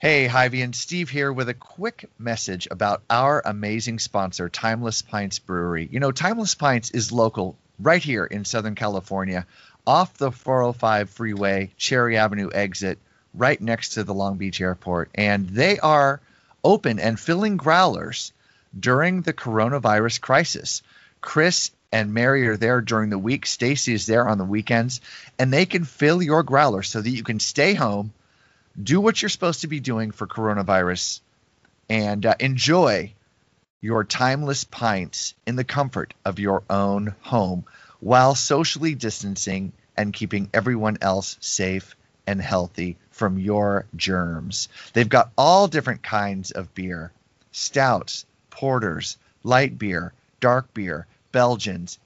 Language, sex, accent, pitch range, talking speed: English, male, American, 100-135 Hz, 145 wpm